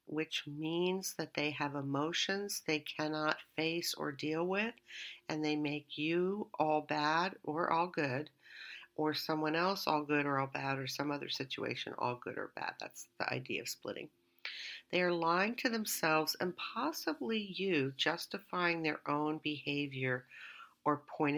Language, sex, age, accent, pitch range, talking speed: English, female, 50-69, American, 145-175 Hz, 155 wpm